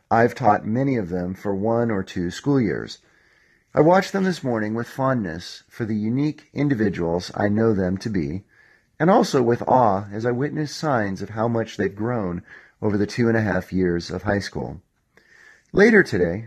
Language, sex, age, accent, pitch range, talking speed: English, male, 40-59, American, 95-125 Hz, 195 wpm